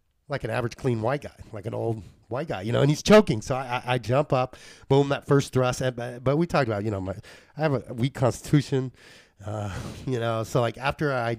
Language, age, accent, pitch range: English, 30-49, American, 115-150 Hz